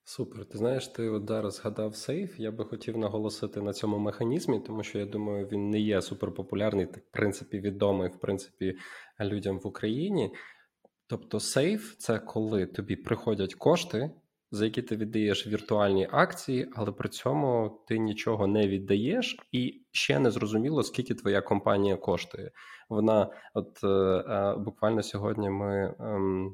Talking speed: 150 wpm